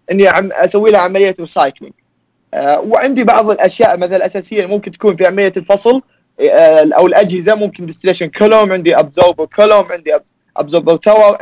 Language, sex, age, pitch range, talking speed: Arabic, male, 20-39, 180-225 Hz, 140 wpm